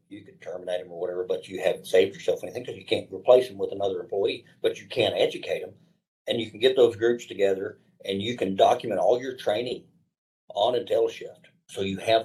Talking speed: 215 wpm